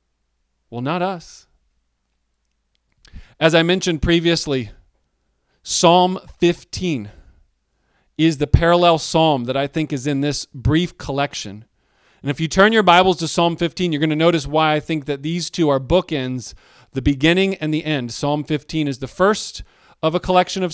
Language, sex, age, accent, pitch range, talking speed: English, male, 40-59, American, 130-170 Hz, 160 wpm